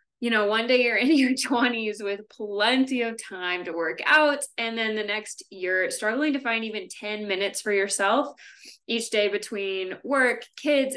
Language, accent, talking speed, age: English, American, 180 wpm, 20-39